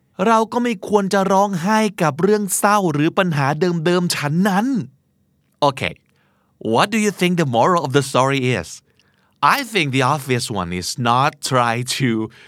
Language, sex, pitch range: Thai, male, 130-195 Hz